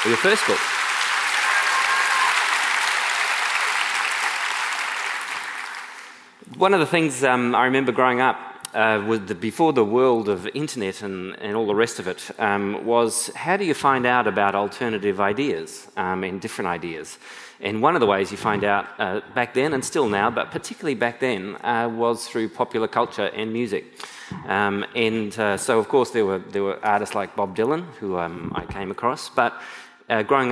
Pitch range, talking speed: 100-120 Hz, 175 wpm